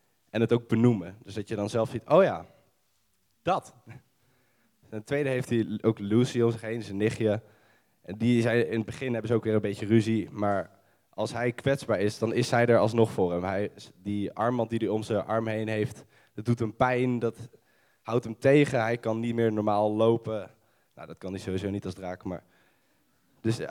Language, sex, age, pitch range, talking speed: Dutch, male, 20-39, 105-125 Hz, 195 wpm